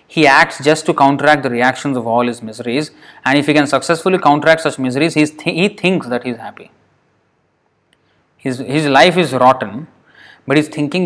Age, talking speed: 20-39, 190 wpm